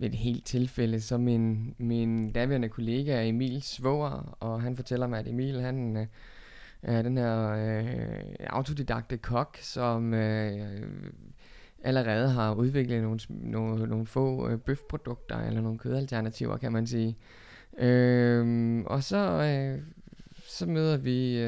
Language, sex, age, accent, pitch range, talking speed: Danish, male, 20-39, native, 115-135 Hz, 115 wpm